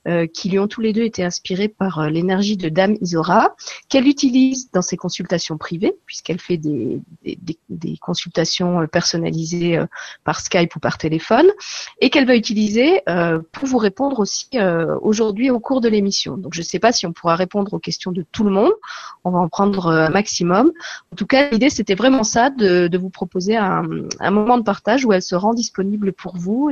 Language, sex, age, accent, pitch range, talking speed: French, female, 30-49, French, 180-225 Hz, 200 wpm